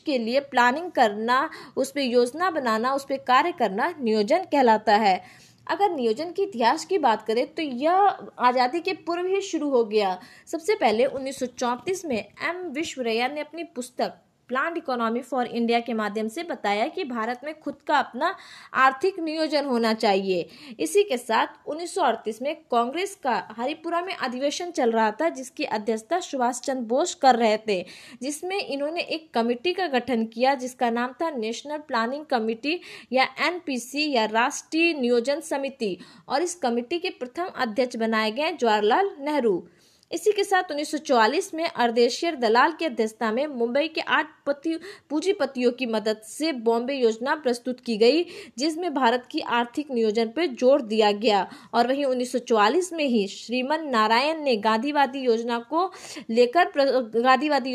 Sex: female